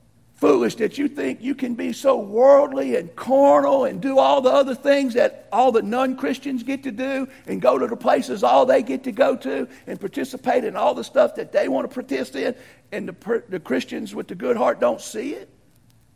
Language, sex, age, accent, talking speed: English, male, 50-69, American, 215 wpm